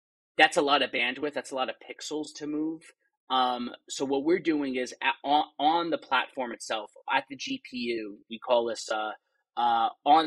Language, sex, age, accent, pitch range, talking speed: English, male, 30-49, American, 125-155 Hz, 185 wpm